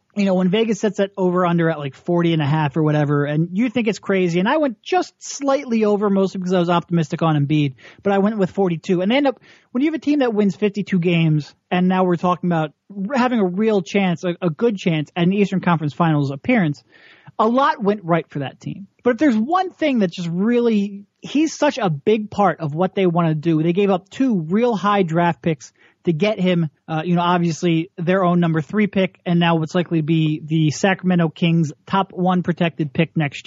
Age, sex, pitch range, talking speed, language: 30-49, male, 170-210 Hz, 235 wpm, English